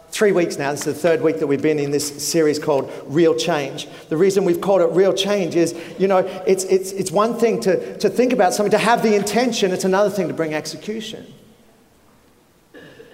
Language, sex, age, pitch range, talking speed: English, male, 40-59, 150-190 Hz, 215 wpm